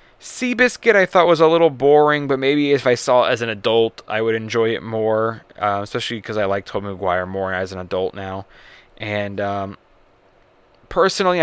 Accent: American